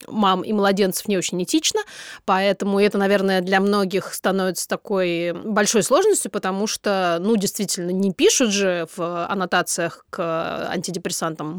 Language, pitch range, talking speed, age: Russian, 190-240 Hz, 135 wpm, 20-39